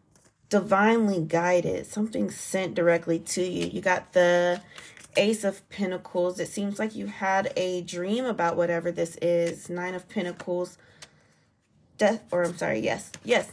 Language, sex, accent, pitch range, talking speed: English, female, American, 170-205 Hz, 145 wpm